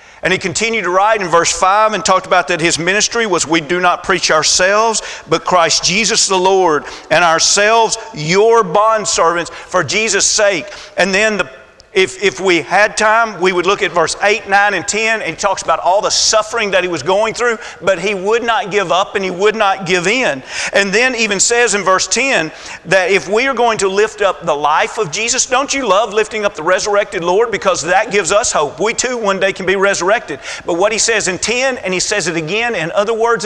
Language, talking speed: English, 230 wpm